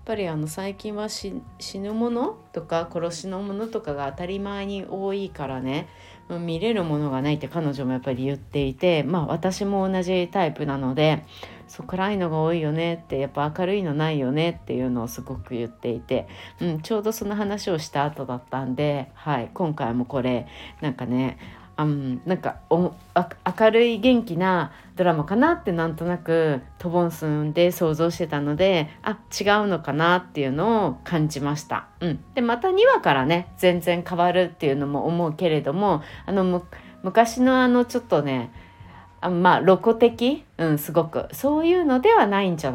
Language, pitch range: Japanese, 140-195 Hz